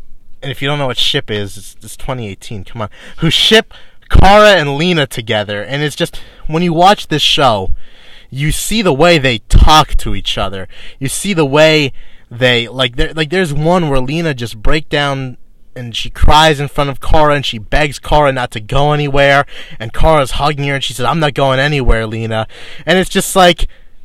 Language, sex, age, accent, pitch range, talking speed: English, male, 30-49, American, 125-185 Hz, 205 wpm